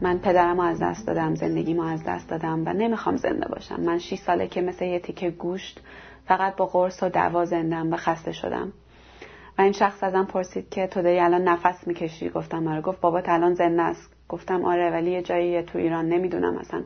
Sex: female